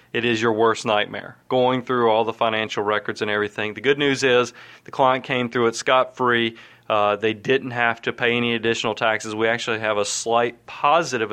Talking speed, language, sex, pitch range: 200 wpm, English, male, 115-135 Hz